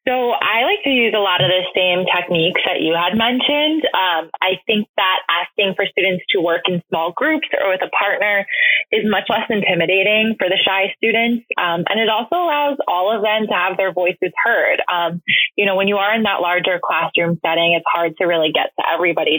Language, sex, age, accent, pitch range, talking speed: English, female, 20-39, American, 175-220 Hz, 215 wpm